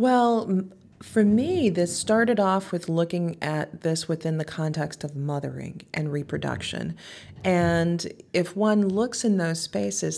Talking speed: 140 wpm